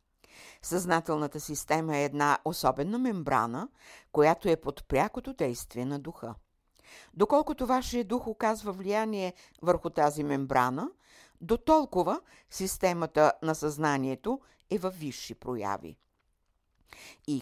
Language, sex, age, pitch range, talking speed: Bulgarian, female, 60-79, 130-190 Hz, 105 wpm